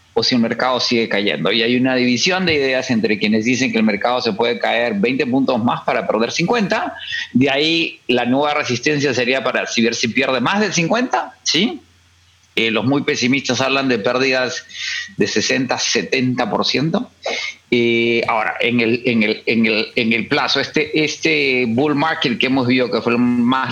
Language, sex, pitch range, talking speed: English, male, 115-155 Hz, 185 wpm